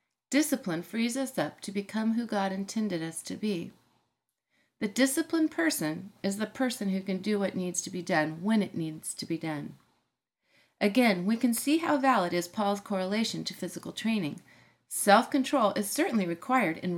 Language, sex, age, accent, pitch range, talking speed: English, female, 40-59, American, 175-245 Hz, 175 wpm